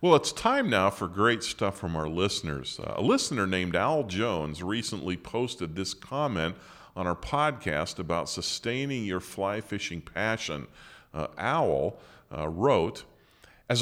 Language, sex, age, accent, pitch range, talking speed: English, male, 40-59, American, 90-115 Hz, 150 wpm